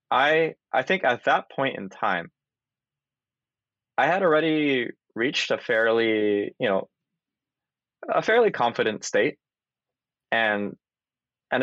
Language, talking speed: English, 115 wpm